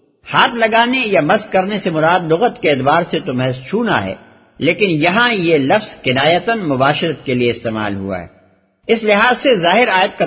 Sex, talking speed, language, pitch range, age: male, 185 wpm, Urdu, 140-205 Hz, 60-79